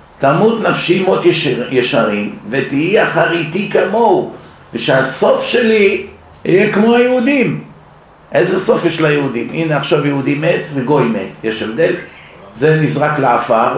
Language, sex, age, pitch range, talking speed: Hebrew, male, 50-69, 130-165 Hz, 120 wpm